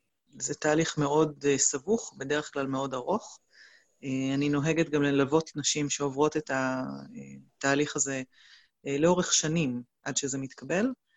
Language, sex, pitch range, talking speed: Hebrew, female, 140-160 Hz, 120 wpm